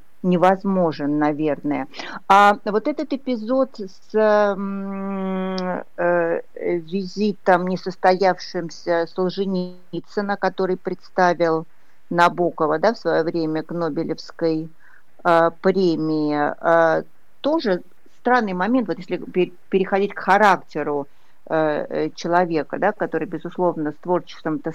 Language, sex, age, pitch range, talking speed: Russian, female, 50-69, 165-205 Hz, 85 wpm